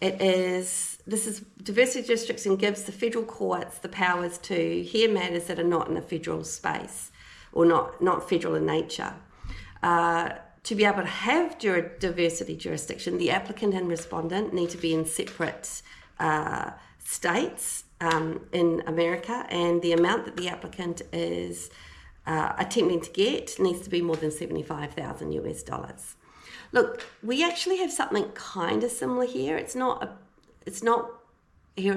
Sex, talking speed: female, 160 wpm